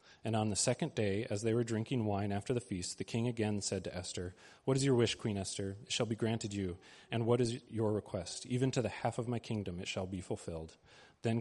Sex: male